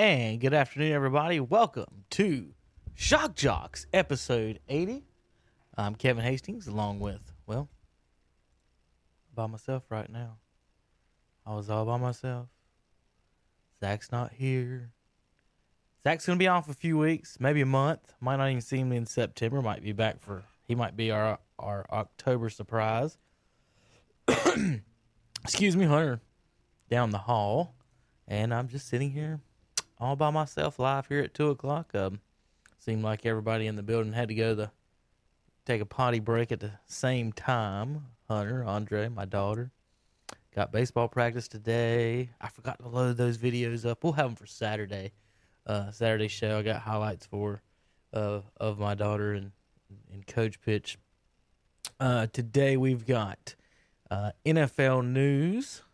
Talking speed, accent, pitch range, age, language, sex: 150 wpm, American, 105-130 Hz, 20-39, English, male